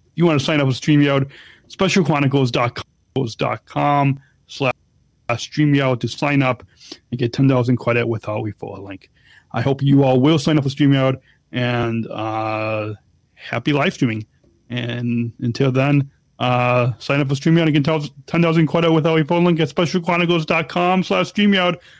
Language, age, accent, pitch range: English, 30-49, American, 125-160 Hz